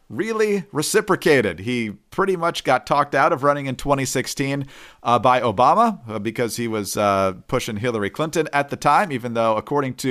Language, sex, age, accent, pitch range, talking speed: English, male, 40-59, American, 120-150 Hz, 170 wpm